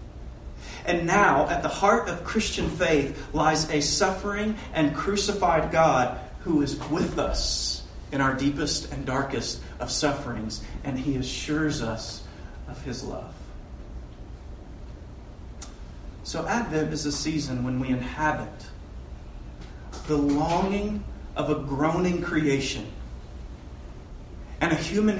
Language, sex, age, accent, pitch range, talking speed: English, male, 40-59, American, 110-155 Hz, 115 wpm